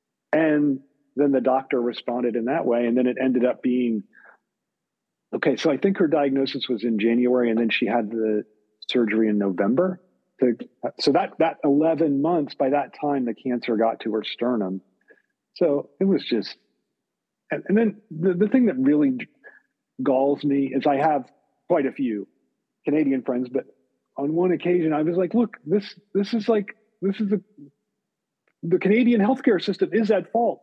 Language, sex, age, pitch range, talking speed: English, male, 40-59, 130-205 Hz, 170 wpm